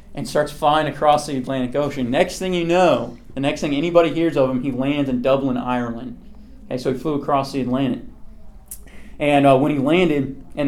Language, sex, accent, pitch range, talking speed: English, male, American, 130-165 Hz, 200 wpm